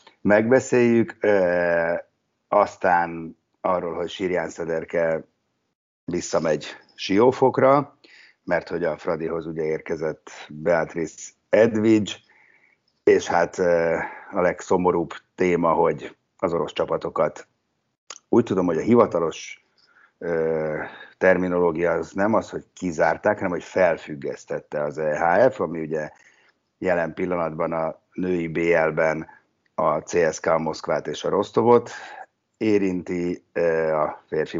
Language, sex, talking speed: Hungarian, male, 105 wpm